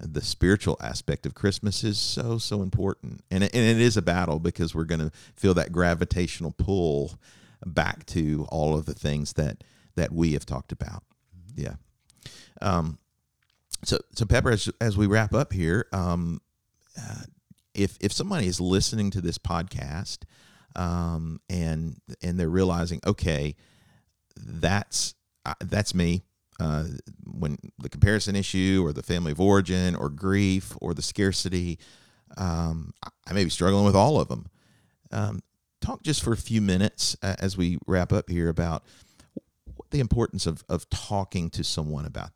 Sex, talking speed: male, 160 wpm